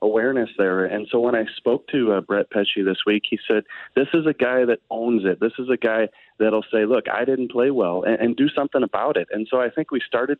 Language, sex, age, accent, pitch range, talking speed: English, male, 30-49, American, 105-125 Hz, 260 wpm